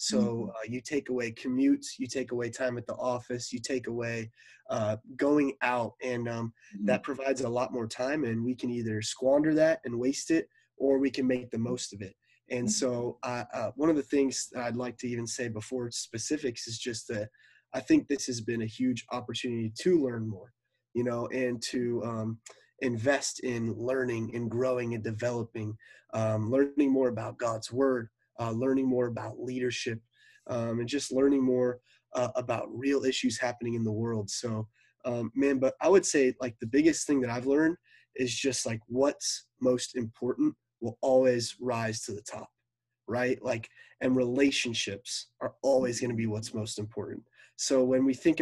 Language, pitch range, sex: English, 115-130 Hz, male